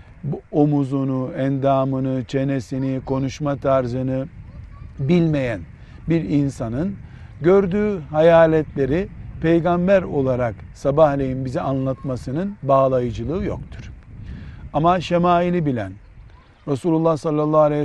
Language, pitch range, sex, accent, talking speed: Turkish, 130-170 Hz, male, native, 75 wpm